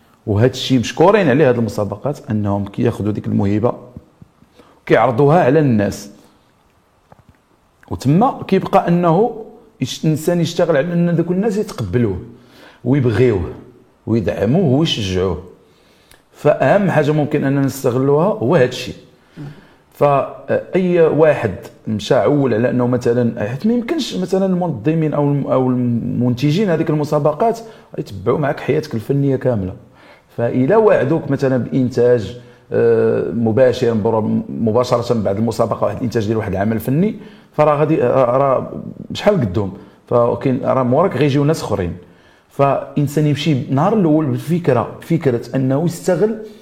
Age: 40-59